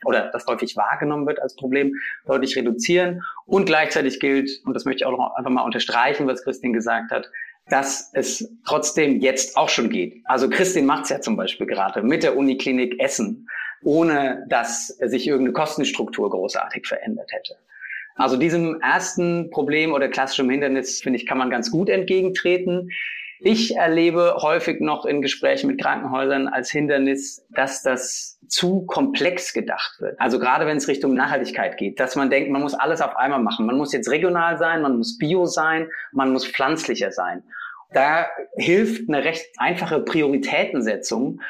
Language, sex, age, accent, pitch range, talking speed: German, male, 30-49, German, 130-175 Hz, 170 wpm